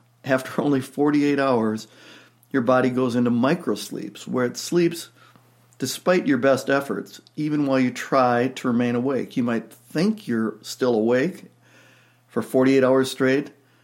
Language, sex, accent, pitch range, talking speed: English, male, American, 120-155 Hz, 145 wpm